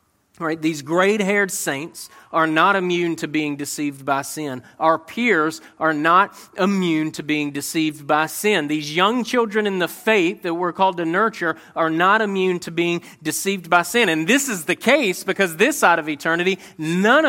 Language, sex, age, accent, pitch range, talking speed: English, male, 40-59, American, 165-215 Hz, 180 wpm